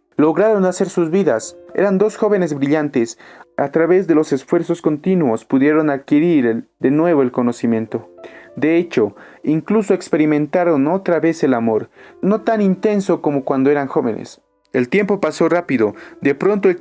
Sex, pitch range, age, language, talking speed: male, 130-165 Hz, 30-49, Spanish, 150 wpm